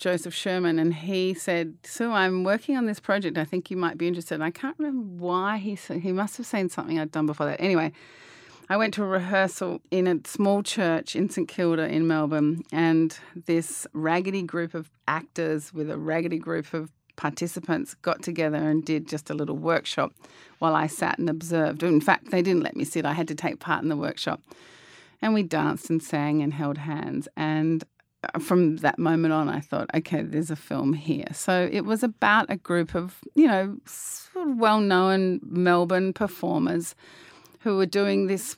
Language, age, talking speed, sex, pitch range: English, 30-49, 195 wpm, female, 160-190 Hz